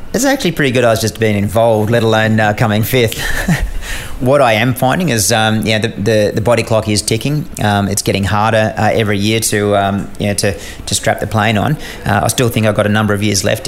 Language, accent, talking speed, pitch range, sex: English, Australian, 255 wpm, 100-110 Hz, male